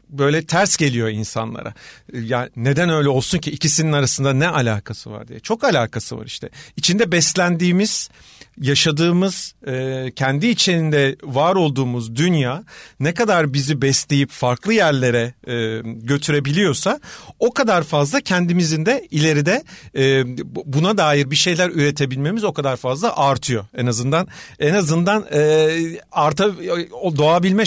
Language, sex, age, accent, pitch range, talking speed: Turkish, male, 40-59, native, 130-170 Hz, 115 wpm